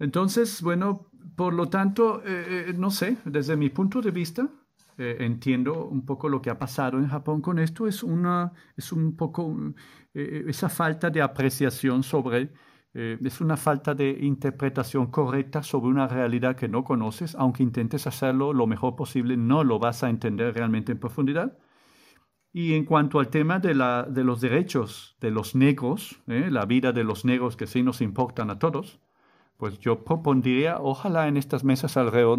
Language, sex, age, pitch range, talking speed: Spanish, male, 50-69, 125-155 Hz, 180 wpm